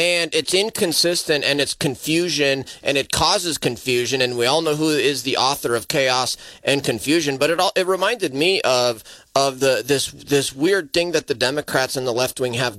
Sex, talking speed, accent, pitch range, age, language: male, 195 wpm, American, 115-150 Hz, 30-49, English